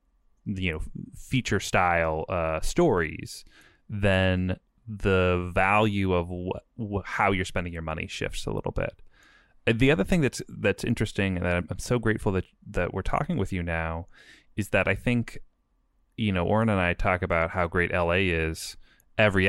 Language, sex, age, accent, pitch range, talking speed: English, male, 30-49, American, 85-105 Hz, 170 wpm